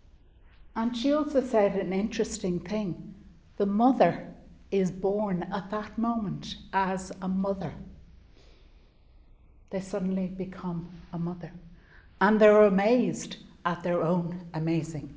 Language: English